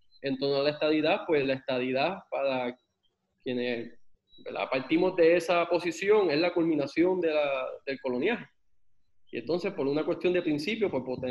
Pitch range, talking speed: 150-190 Hz, 165 wpm